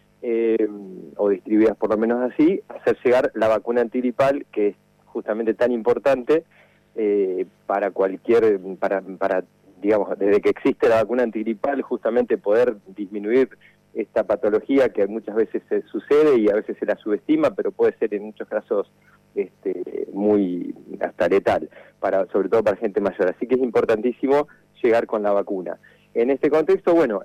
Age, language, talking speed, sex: 40-59, Spanish, 160 wpm, male